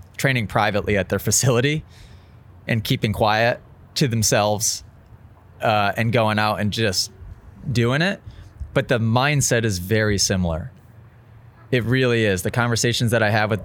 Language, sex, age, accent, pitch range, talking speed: English, male, 20-39, American, 105-125 Hz, 145 wpm